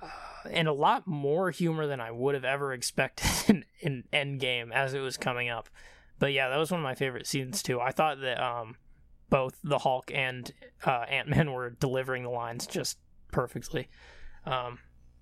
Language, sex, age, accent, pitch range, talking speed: English, male, 20-39, American, 120-165 Hz, 190 wpm